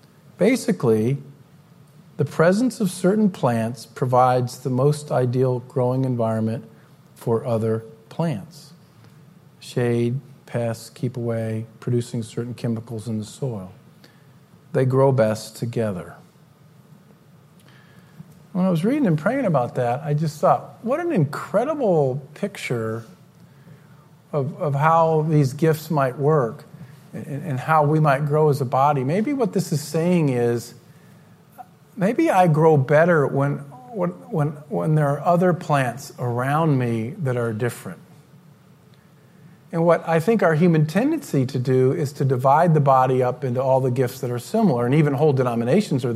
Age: 50-69